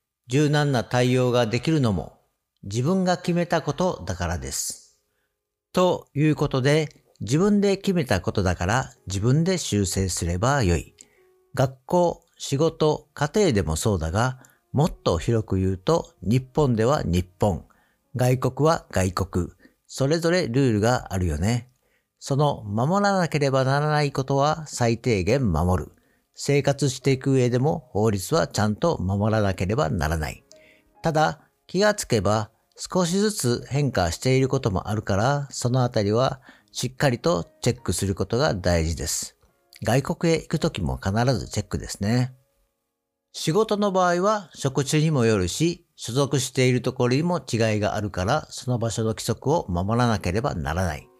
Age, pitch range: 50-69, 105-150 Hz